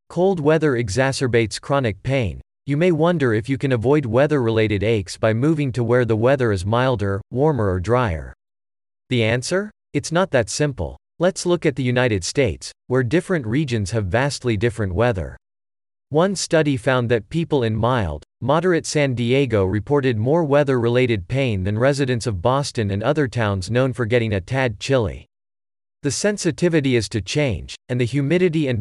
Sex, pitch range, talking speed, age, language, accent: male, 105-145 Hz, 165 wpm, 40-59, English, American